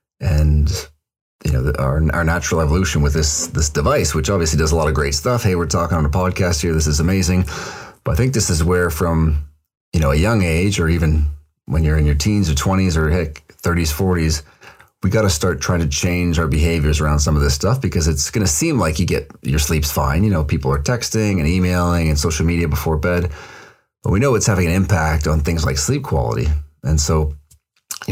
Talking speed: 230 wpm